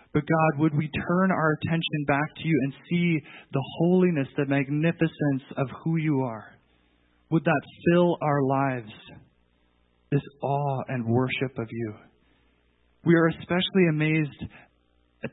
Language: English